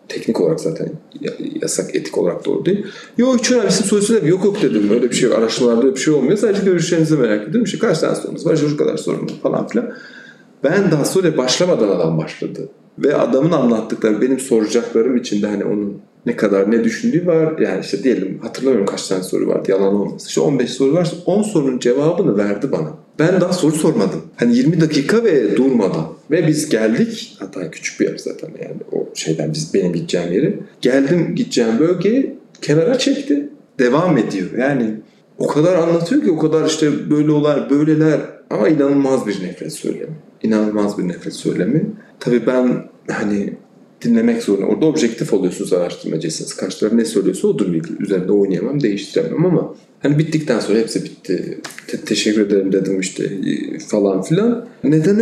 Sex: male